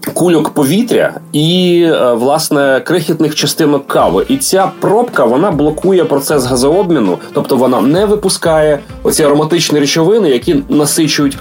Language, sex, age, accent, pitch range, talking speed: Ukrainian, male, 30-49, native, 135-180 Hz, 120 wpm